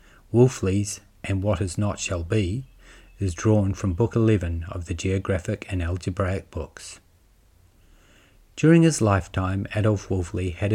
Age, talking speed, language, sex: 40-59, 135 wpm, English, male